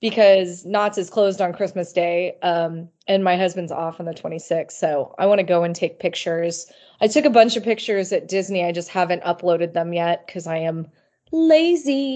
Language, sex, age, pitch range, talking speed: English, female, 20-39, 175-210 Hz, 200 wpm